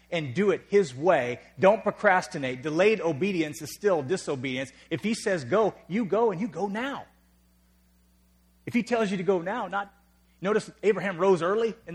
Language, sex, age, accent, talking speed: English, male, 40-59, American, 175 wpm